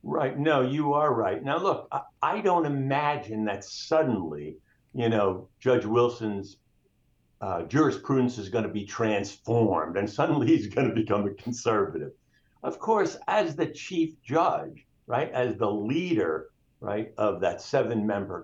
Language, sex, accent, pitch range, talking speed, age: English, male, American, 115-165 Hz, 155 wpm, 60-79